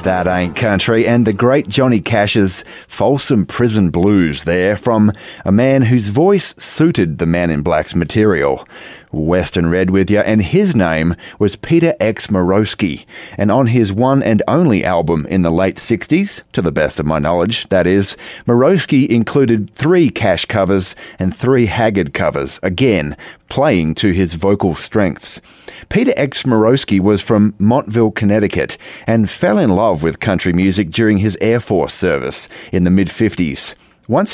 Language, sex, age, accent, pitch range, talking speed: English, male, 30-49, Australian, 90-115 Hz, 160 wpm